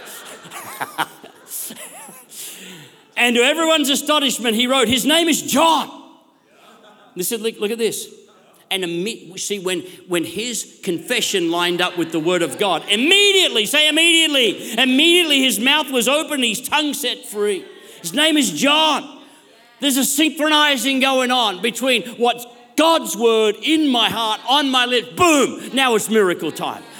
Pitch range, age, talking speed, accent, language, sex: 210-290 Hz, 40-59, 150 wpm, Australian, English, male